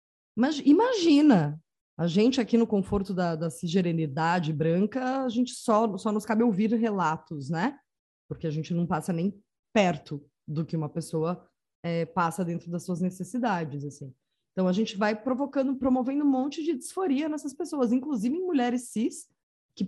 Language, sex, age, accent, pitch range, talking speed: English, female, 20-39, Brazilian, 170-235 Hz, 165 wpm